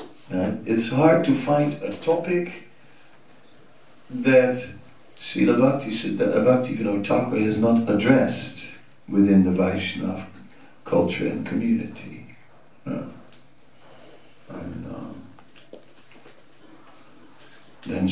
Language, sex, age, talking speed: English, male, 60-79, 80 wpm